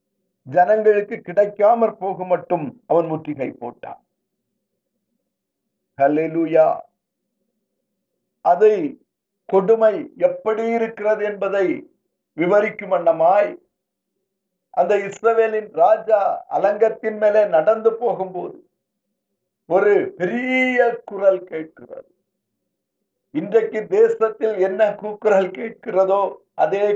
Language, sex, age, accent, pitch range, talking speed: Tamil, male, 50-69, native, 195-245 Hz, 65 wpm